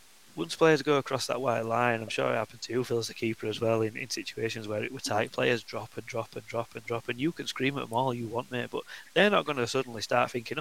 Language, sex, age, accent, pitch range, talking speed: English, male, 20-39, British, 115-140 Hz, 290 wpm